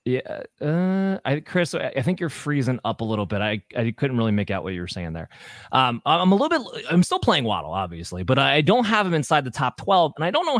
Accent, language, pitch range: American, English, 120-160 Hz